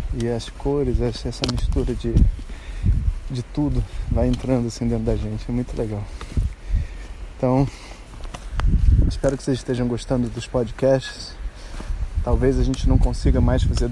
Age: 20-39